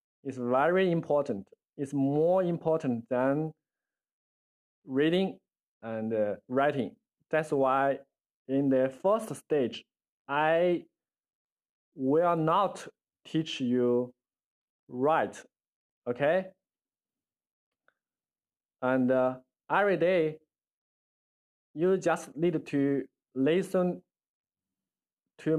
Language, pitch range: Chinese, 130-190 Hz